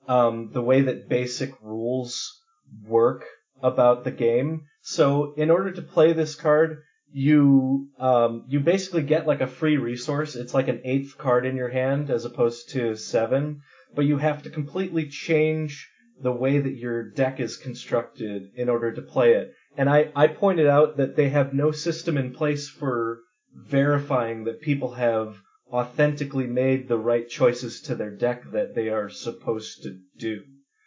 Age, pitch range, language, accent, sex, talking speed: 30-49, 120-150 Hz, English, American, male, 170 wpm